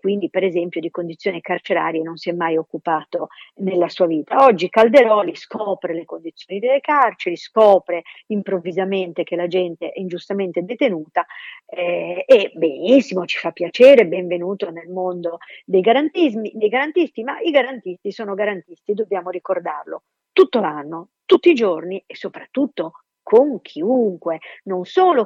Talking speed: 140 wpm